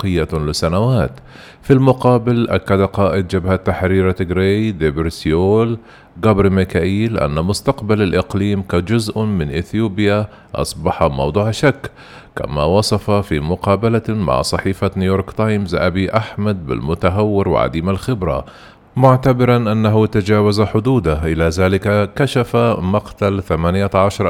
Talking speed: 105 wpm